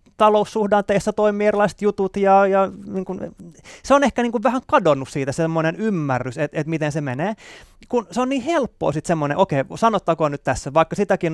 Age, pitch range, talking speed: 30-49, 145-205 Hz, 185 wpm